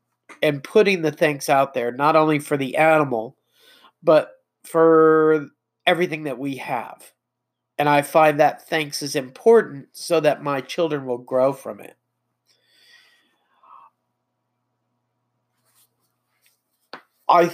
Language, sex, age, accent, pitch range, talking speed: English, male, 40-59, American, 120-175 Hz, 115 wpm